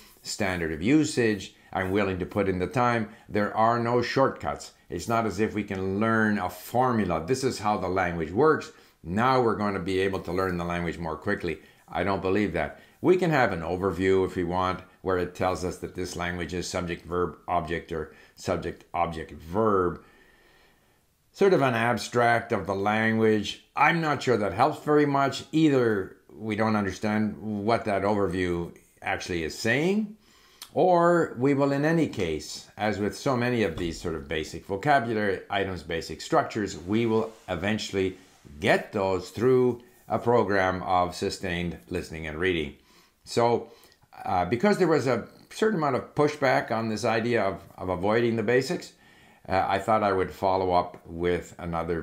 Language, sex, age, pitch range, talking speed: English, male, 60-79, 90-120 Hz, 175 wpm